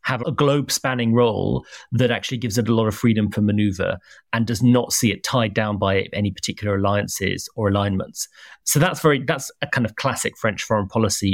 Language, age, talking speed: English, 30-49, 200 wpm